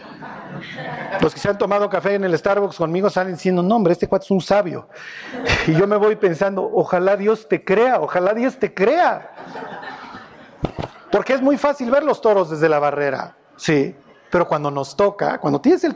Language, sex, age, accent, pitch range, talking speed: Spanish, male, 50-69, Mexican, 185-230 Hz, 190 wpm